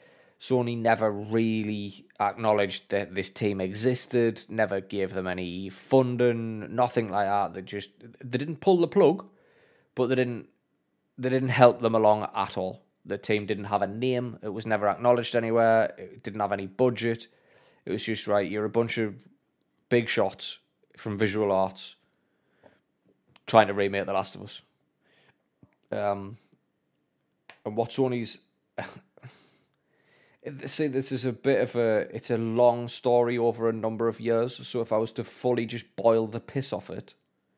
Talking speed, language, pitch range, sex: 160 wpm, English, 100-125 Hz, male